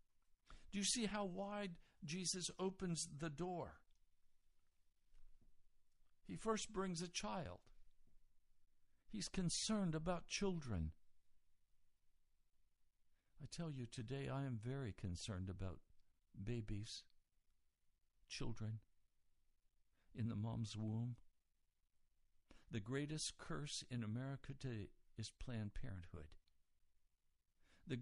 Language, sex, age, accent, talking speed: English, male, 60-79, American, 90 wpm